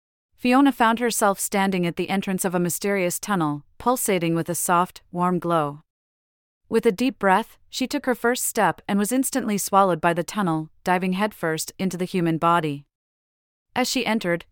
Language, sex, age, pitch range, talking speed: English, female, 30-49, 165-215 Hz, 175 wpm